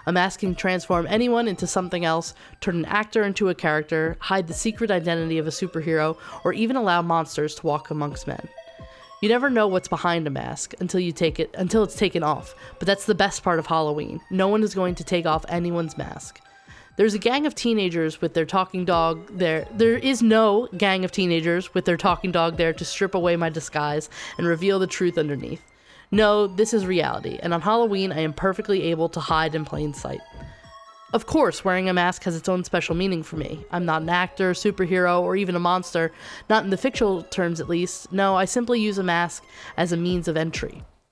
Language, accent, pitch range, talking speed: English, American, 165-200 Hz, 215 wpm